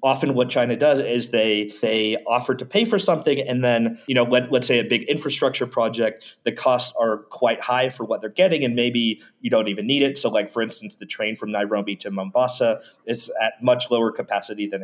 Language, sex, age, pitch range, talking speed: English, male, 30-49, 110-130 Hz, 220 wpm